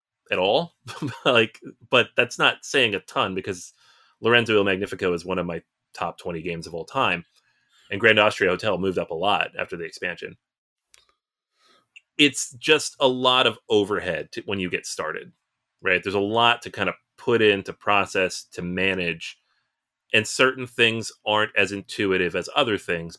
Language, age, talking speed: English, 30-49, 175 wpm